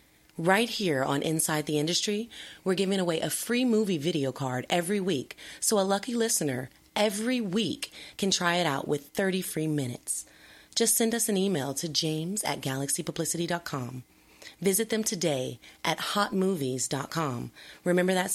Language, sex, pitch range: English, female, 135-190 Hz